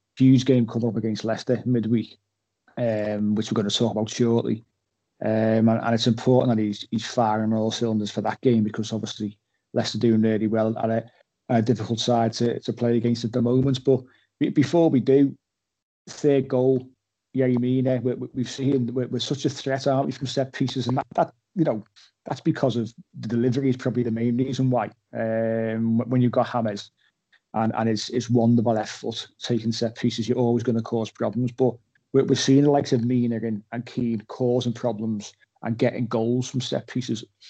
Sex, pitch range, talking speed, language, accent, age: male, 110-130 Hz, 195 wpm, English, British, 30-49